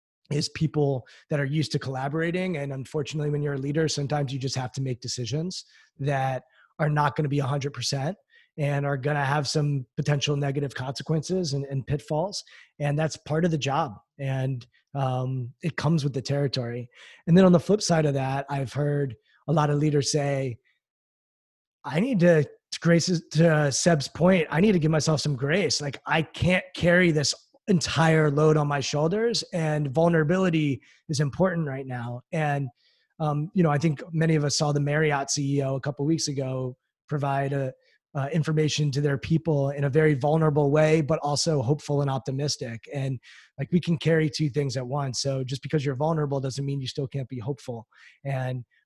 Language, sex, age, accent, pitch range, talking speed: English, male, 20-39, American, 135-160 Hz, 185 wpm